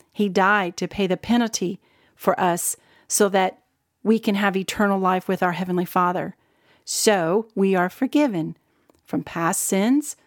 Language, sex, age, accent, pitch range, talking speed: English, female, 40-59, American, 185-235 Hz, 150 wpm